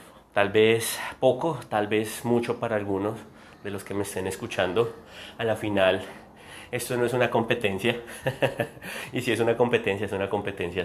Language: Spanish